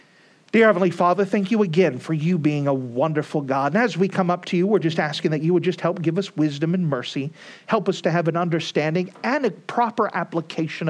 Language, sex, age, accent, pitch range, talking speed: English, male, 50-69, American, 145-180 Hz, 230 wpm